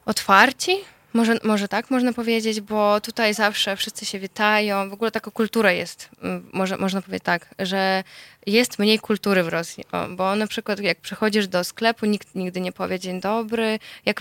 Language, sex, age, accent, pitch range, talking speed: Polish, female, 10-29, native, 195-220 Hz, 175 wpm